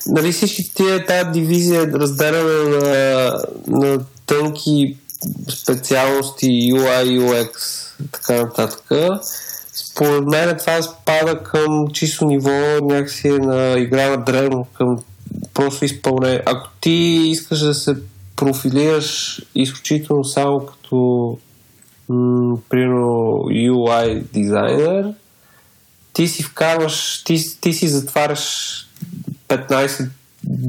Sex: male